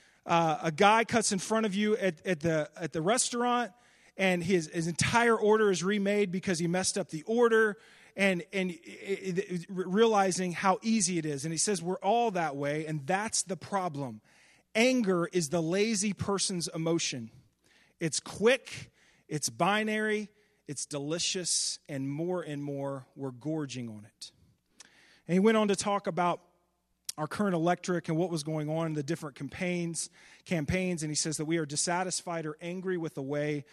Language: English